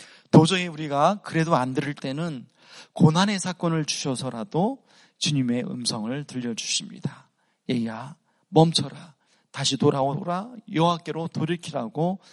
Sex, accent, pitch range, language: male, native, 130-175 Hz, Korean